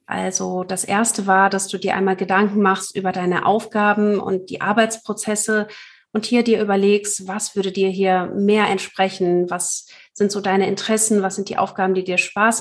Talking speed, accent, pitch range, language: 180 wpm, German, 185-205 Hz, German